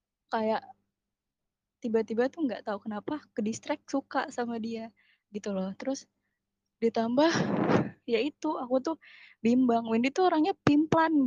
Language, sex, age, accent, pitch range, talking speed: Indonesian, female, 20-39, native, 215-260 Hz, 115 wpm